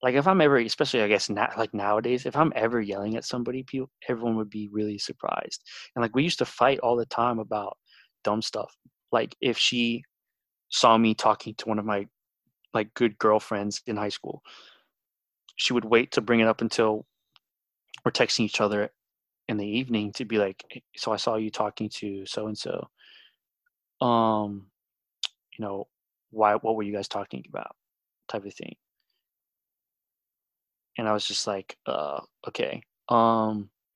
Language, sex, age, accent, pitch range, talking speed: English, male, 20-39, American, 105-120 Hz, 170 wpm